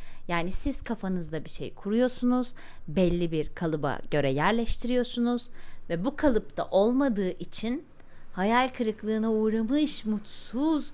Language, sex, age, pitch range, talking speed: Turkish, female, 30-49, 185-250 Hz, 110 wpm